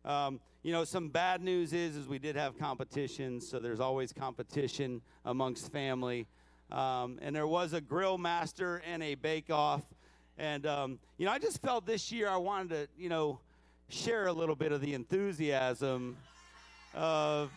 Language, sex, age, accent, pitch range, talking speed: English, male, 40-59, American, 140-210 Hz, 170 wpm